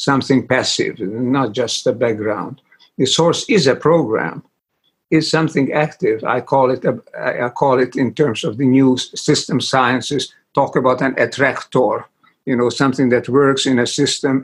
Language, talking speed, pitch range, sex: English, 165 wpm, 130-155 Hz, male